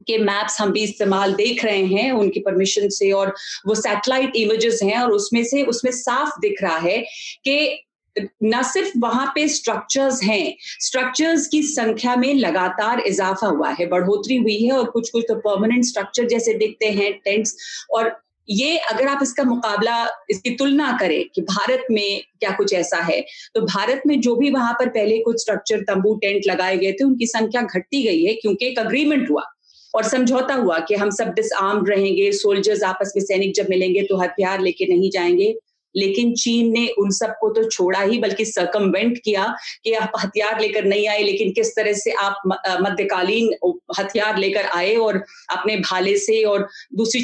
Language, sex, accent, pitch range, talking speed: Hindi, female, native, 200-255 Hz, 185 wpm